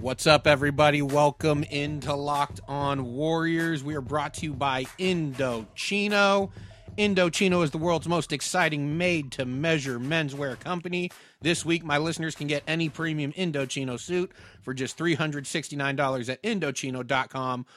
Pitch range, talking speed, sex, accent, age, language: 135-160 Hz, 130 wpm, male, American, 30-49, English